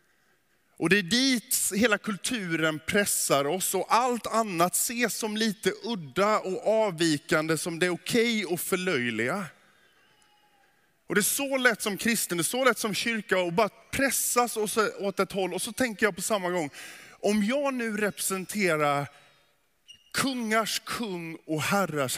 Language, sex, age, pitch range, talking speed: Swedish, male, 20-39, 165-225 Hz, 155 wpm